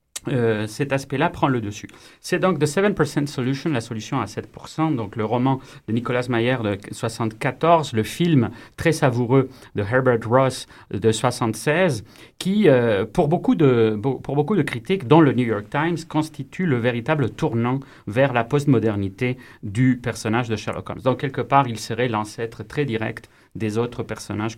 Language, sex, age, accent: French, male, 40-59, French